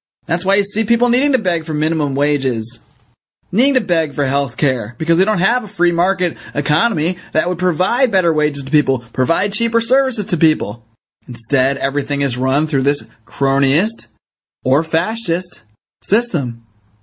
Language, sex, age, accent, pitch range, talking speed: English, male, 30-49, American, 140-190 Hz, 165 wpm